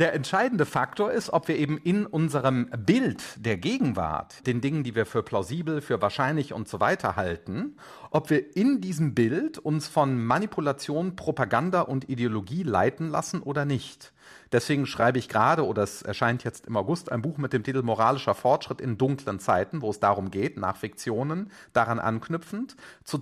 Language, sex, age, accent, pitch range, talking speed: German, male, 40-59, German, 110-160 Hz, 175 wpm